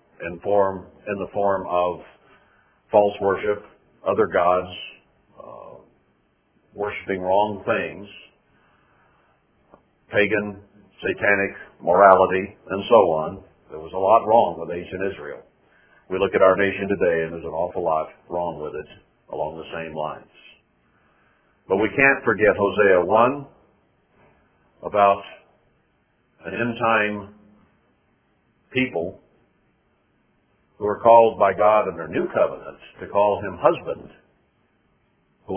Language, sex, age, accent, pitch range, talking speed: English, male, 50-69, American, 95-130 Hz, 120 wpm